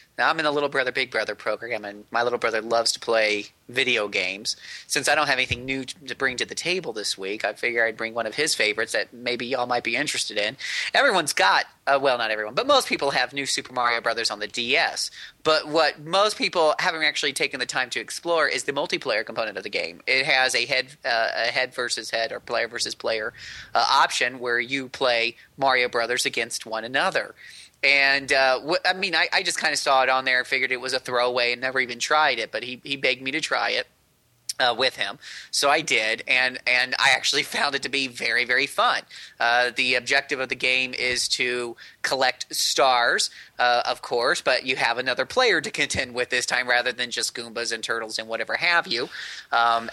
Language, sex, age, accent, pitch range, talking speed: English, male, 30-49, American, 115-135 Hz, 225 wpm